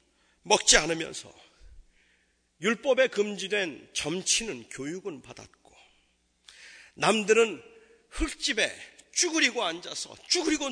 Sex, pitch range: male, 220-305 Hz